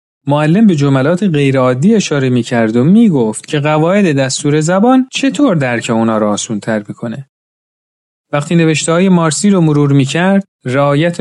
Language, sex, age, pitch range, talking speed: Persian, male, 40-59, 125-180 Hz, 150 wpm